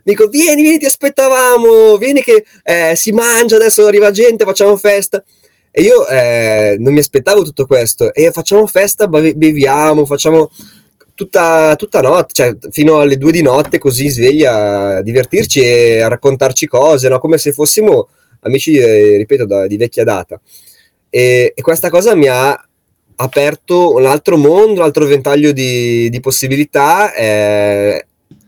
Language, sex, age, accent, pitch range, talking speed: Italian, male, 20-39, native, 120-205 Hz, 150 wpm